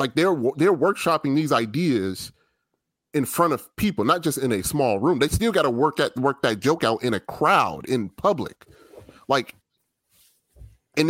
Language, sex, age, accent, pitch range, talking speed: English, male, 30-49, American, 110-160 Hz, 180 wpm